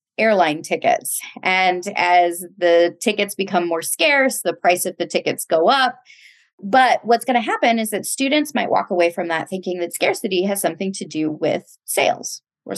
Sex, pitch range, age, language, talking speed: female, 175-240 Hz, 30-49, English, 185 wpm